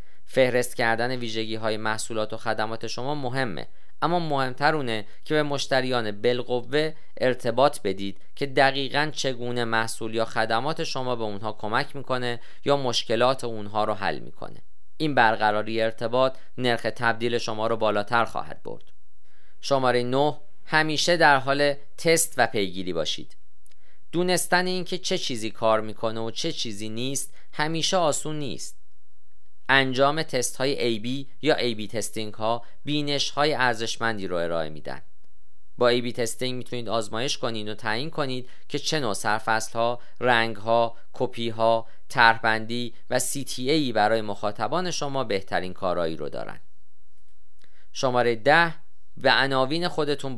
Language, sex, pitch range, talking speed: Persian, male, 110-140 Hz, 140 wpm